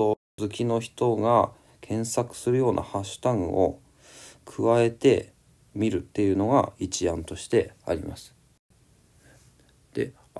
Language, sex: Japanese, male